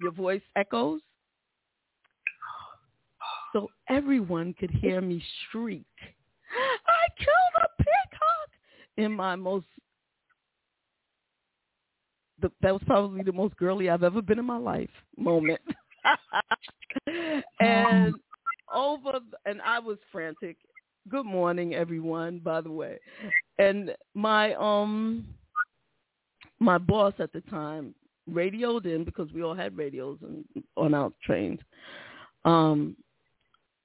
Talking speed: 110 wpm